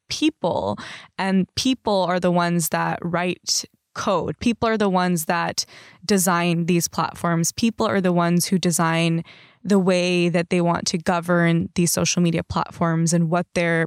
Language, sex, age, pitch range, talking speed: English, female, 20-39, 170-200 Hz, 160 wpm